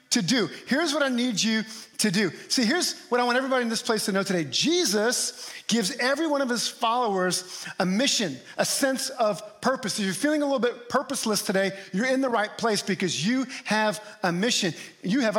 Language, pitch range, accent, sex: English, 185-230 Hz, American, male